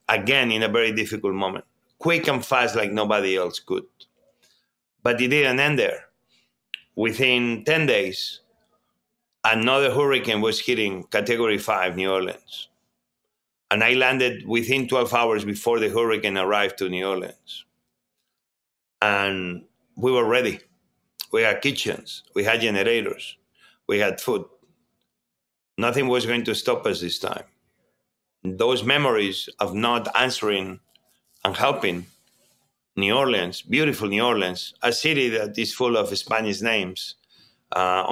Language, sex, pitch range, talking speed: English, male, 95-125 Hz, 130 wpm